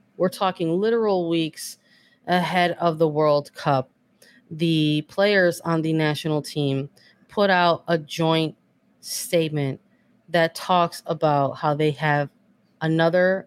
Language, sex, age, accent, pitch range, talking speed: English, female, 30-49, American, 150-170 Hz, 120 wpm